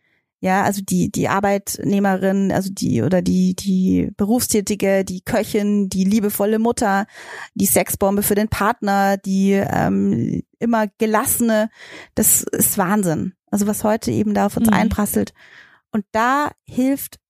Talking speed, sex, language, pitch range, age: 135 wpm, female, German, 200-230 Hz, 30-49